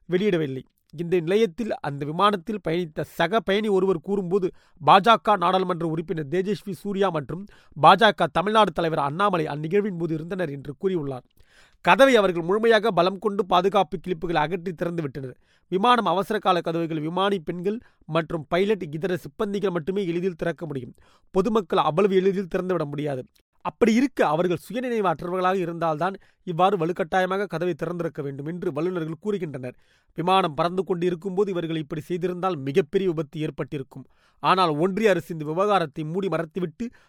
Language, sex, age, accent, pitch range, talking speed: Tamil, male, 30-49, native, 165-195 Hz, 135 wpm